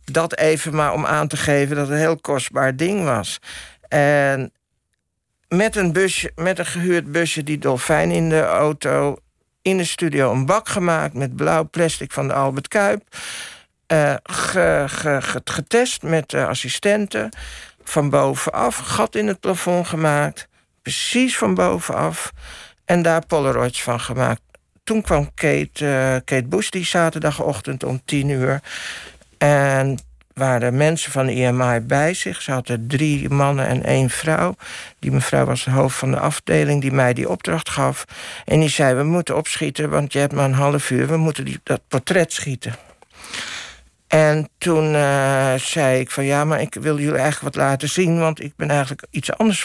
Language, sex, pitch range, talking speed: Dutch, male, 130-165 Hz, 165 wpm